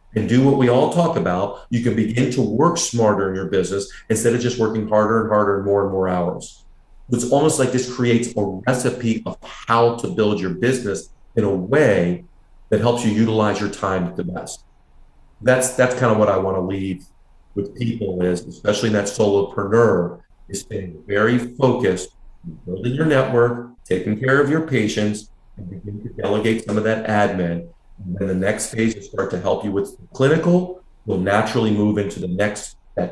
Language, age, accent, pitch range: English, 40-59, American, 95-115 Hz